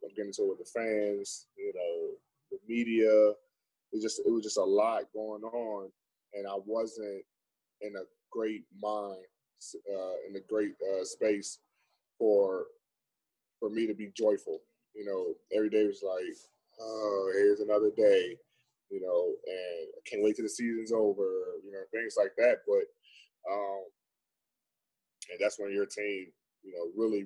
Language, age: English, 10-29